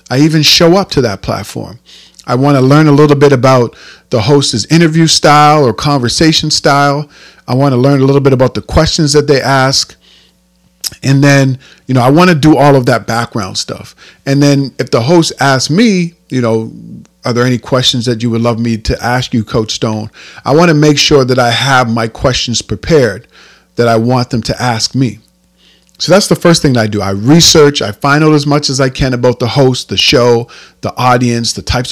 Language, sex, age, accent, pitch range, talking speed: English, male, 40-59, American, 115-145 Hz, 220 wpm